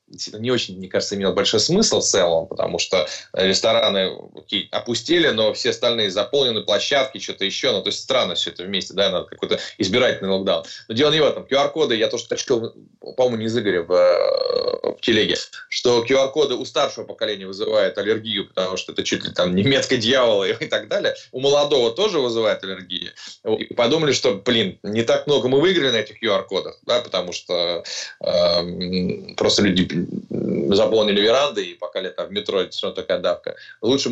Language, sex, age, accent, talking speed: Russian, male, 20-39, native, 180 wpm